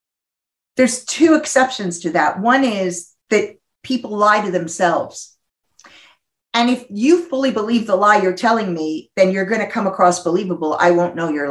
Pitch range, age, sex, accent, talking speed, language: 170-220 Hz, 50-69, female, American, 170 wpm, English